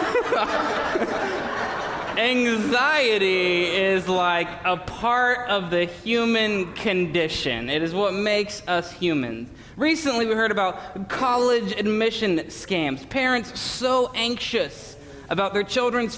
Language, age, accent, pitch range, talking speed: English, 20-39, American, 155-215 Hz, 105 wpm